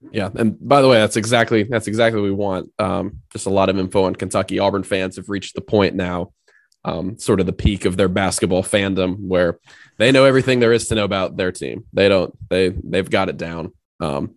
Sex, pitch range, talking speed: male, 90-110 Hz, 230 wpm